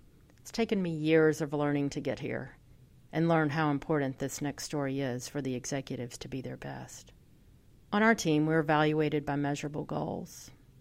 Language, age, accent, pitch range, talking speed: English, 40-59, American, 140-165 Hz, 180 wpm